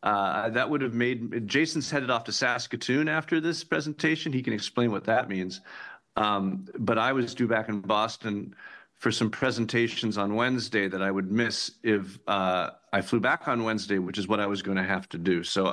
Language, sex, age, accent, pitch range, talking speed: English, male, 50-69, American, 100-120 Hz, 205 wpm